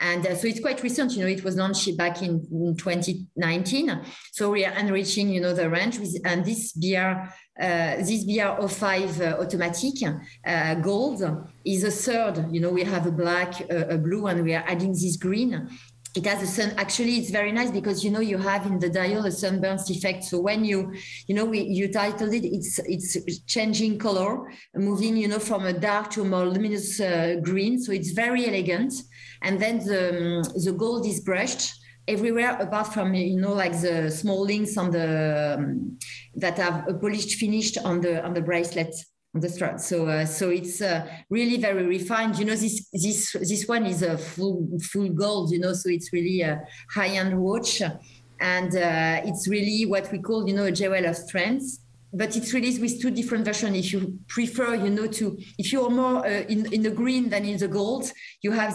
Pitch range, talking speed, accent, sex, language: 175-210 Hz, 200 wpm, French, female, English